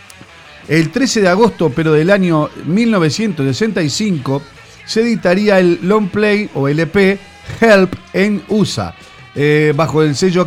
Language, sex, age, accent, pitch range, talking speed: Spanish, male, 40-59, Argentinian, 155-210 Hz, 125 wpm